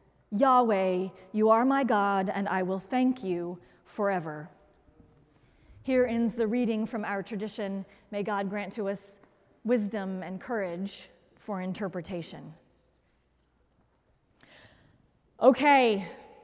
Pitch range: 205-305 Hz